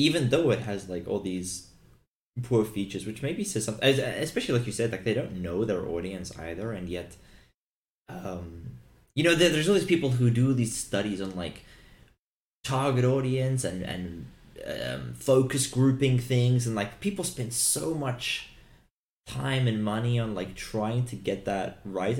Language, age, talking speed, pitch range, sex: English, 20-39, 170 wpm, 90-125 Hz, male